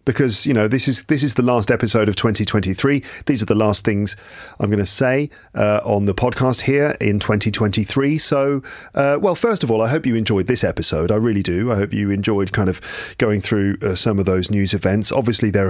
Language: English